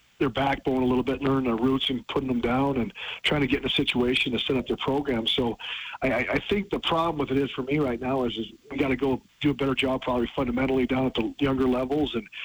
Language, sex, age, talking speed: English, male, 40-59, 260 wpm